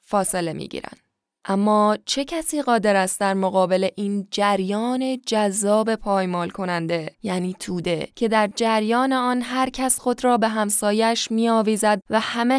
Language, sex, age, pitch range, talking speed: Persian, female, 10-29, 200-235 Hz, 140 wpm